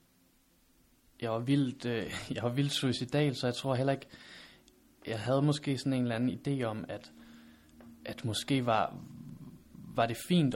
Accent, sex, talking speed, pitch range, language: native, male, 165 wpm, 110-125 Hz, Danish